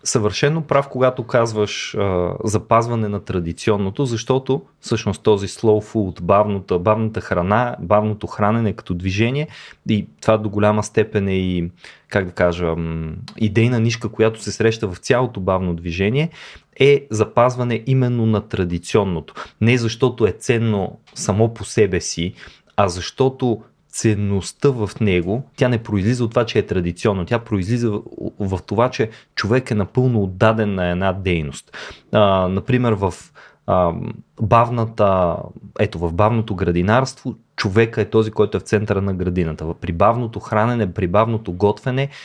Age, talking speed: 30-49, 140 wpm